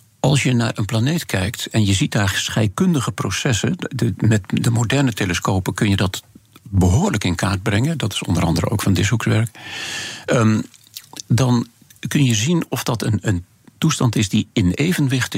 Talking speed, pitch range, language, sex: 180 wpm, 95-120 Hz, Dutch, male